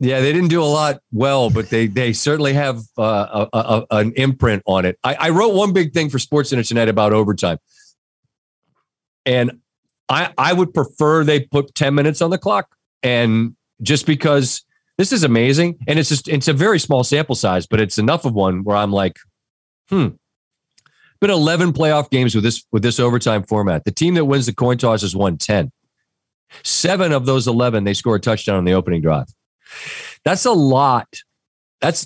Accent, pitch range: American, 110-150 Hz